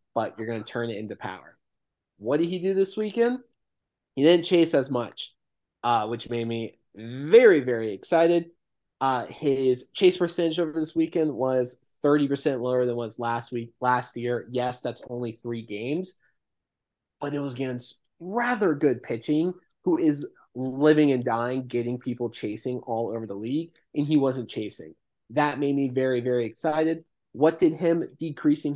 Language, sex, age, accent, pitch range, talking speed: English, male, 20-39, American, 120-155 Hz, 170 wpm